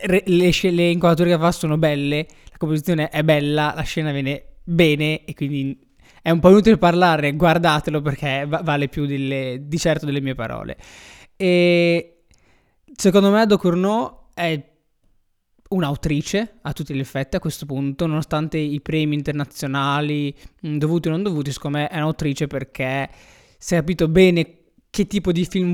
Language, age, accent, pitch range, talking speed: Italian, 20-39, native, 145-175 Hz, 160 wpm